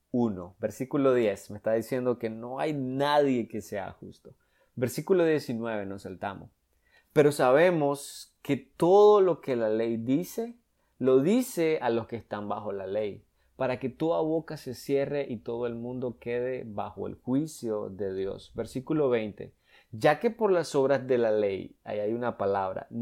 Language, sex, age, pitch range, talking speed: Spanish, male, 30-49, 105-135 Hz, 170 wpm